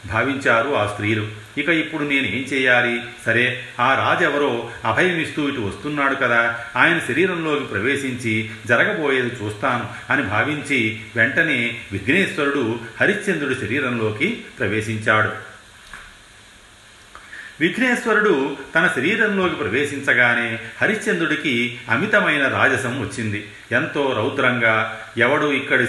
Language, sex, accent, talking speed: Telugu, male, native, 90 wpm